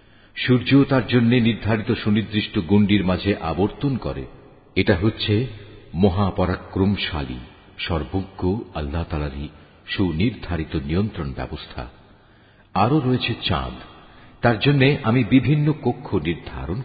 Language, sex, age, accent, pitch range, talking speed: Bengali, male, 50-69, native, 90-120 Hz, 95 wpm